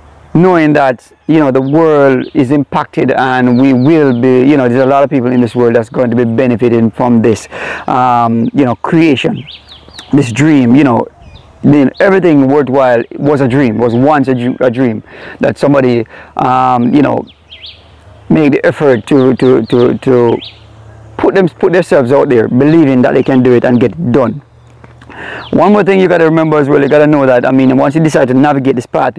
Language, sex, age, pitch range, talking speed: English, male, 30-49, 125-155 Hz, 205 wpm